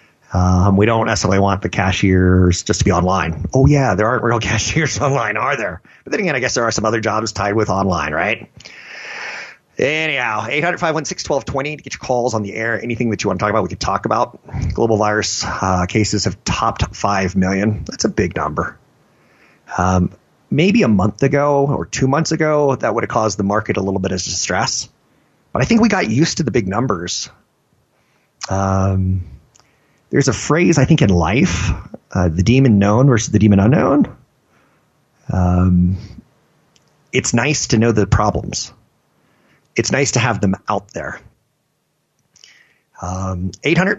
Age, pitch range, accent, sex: 30-49, 95-125 Hz, American, male